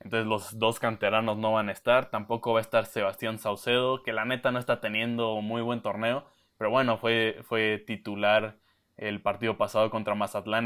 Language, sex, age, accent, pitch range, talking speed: Spanish, male, 20-39, Mexican, 105-115 Hz, 185 wpm